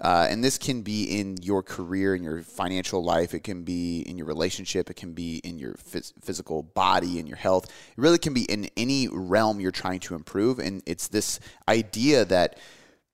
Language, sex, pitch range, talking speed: English, male, 95-120 Hz, 200 wpm